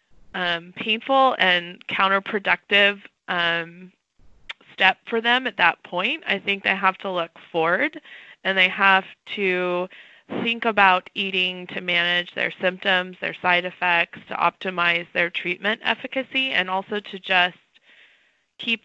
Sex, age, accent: female, 20-39, American